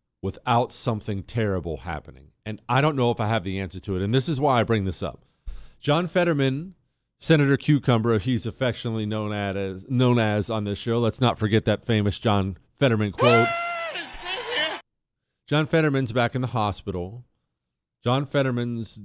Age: 40-59